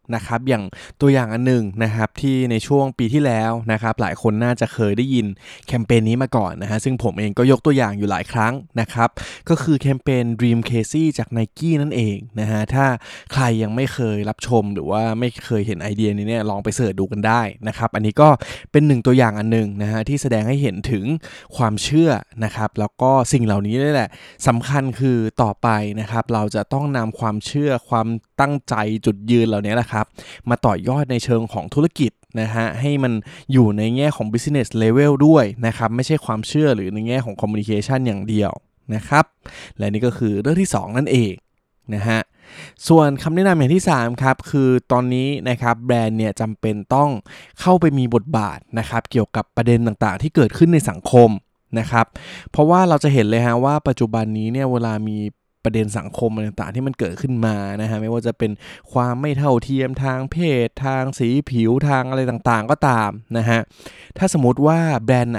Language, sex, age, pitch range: Thai, male, 20-39, 110-135 Hz